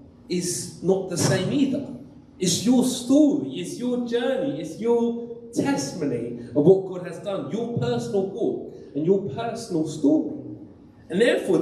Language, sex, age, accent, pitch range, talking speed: English, male, 30-49, British, 155-245 Hz, 145 wpm